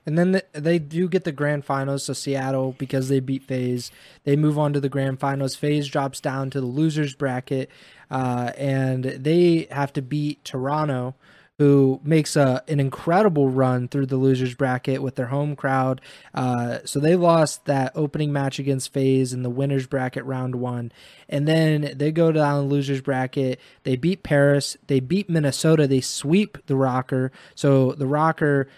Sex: male